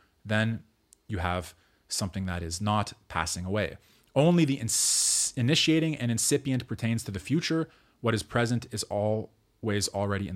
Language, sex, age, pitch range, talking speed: English, male, 30-49, 100-125 Hz, 150 wpm